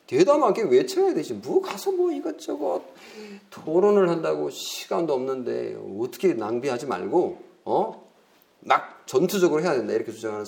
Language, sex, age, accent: Korean, male, 40-59, native